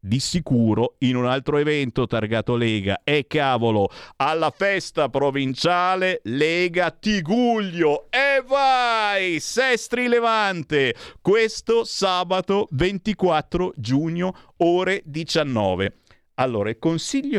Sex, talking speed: male, 95 wpm